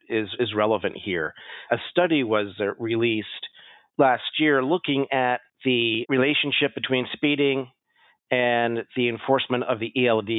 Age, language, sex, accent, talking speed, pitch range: 40-59, English, male, American, 135 wpm, 105-135 Hz